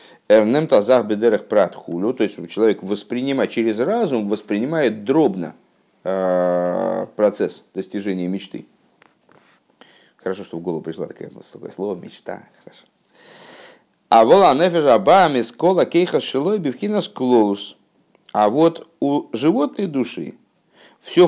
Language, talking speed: Russian, 75 wpm